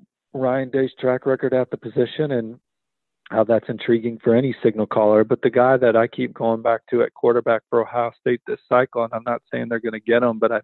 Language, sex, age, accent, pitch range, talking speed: English, male, 40-59, American, 110-120 Hz, 235 wpm